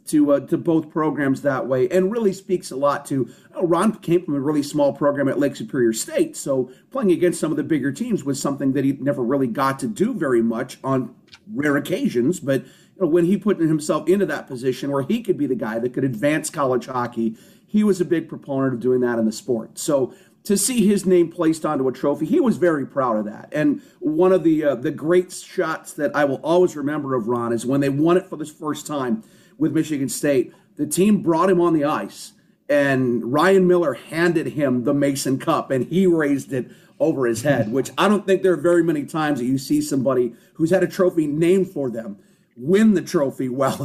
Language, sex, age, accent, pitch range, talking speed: English, male, 40-59, American, 135-180 Hz, 230 wpm